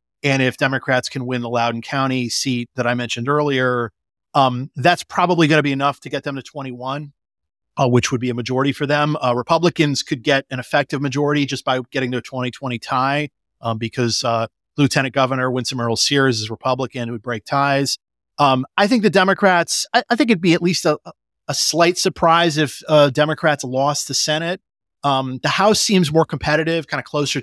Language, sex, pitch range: English, male, 120-150 Hz